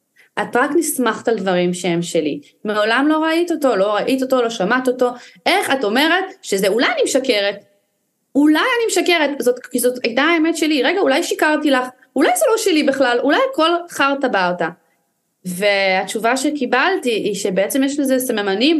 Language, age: Hebrew, 20-39